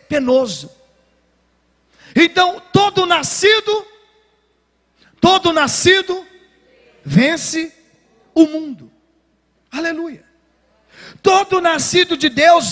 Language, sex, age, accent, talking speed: Portuguese, male, 40-59, Brazilian, 65 wpm